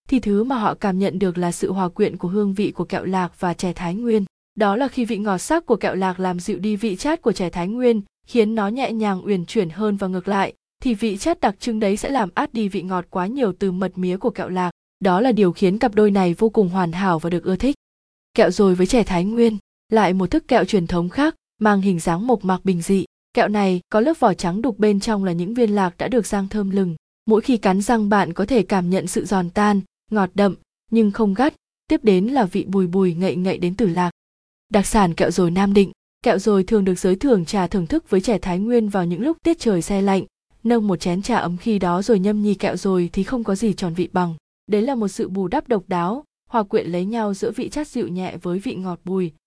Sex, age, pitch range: female, 20-39, 185-225 Hz